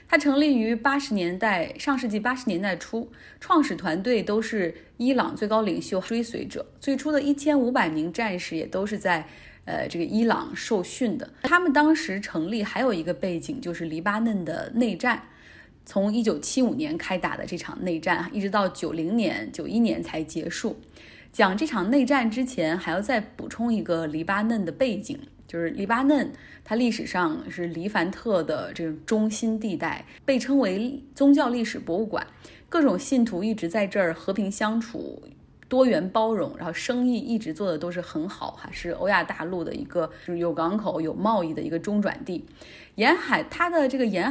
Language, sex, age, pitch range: Chinese, female, 20-39, 175-255 Hz